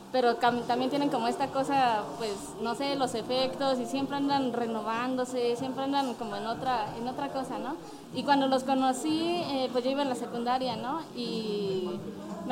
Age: 20-39